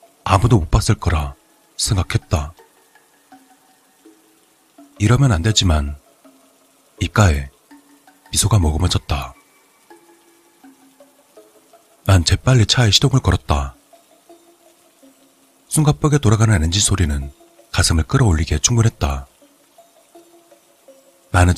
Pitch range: 90-150 Hz